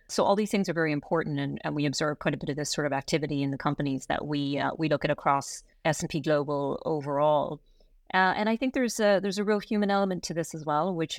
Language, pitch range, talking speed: English, 145-165 Hz, 270 wpm